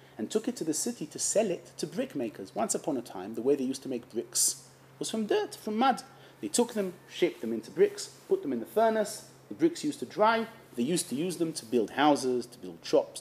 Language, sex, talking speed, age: English, male, 250 wpm, 30-49